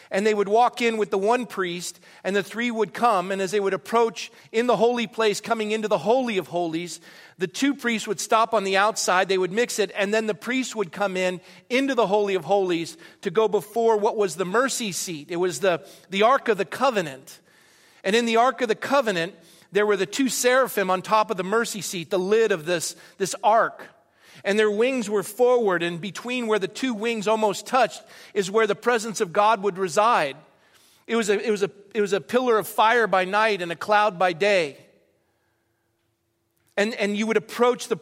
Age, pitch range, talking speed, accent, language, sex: 40-59, 190-225 Hz, 220 wpm, American, English, male